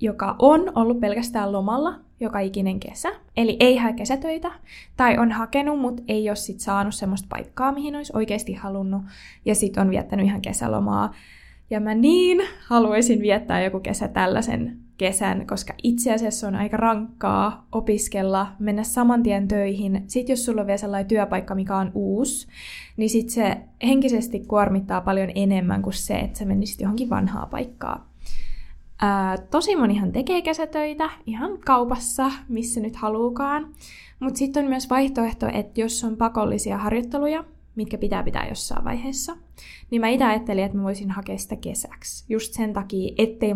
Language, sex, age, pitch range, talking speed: Finnish, female, 20-39, 195-240 Hz, 155 wpm